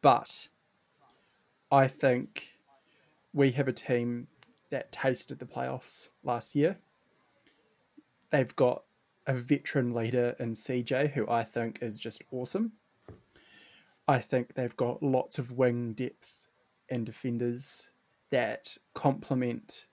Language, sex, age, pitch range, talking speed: English, male, 20-39, 120-135 Hz, 115 wpm